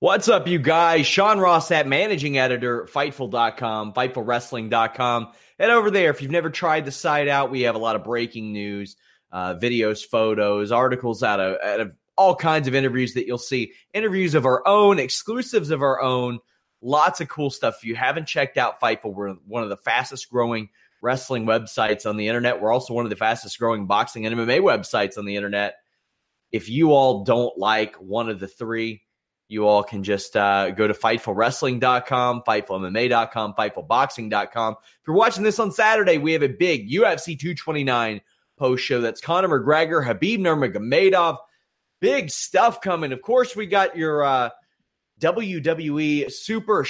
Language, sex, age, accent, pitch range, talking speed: English, male, 30-49, American, 115-155 Hz, 170 wpm